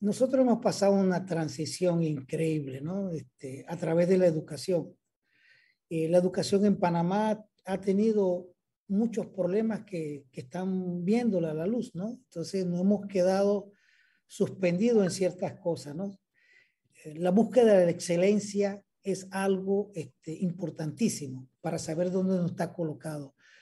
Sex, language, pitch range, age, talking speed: male, Spanish, 165-200 Hz, 40-59, 135 wpm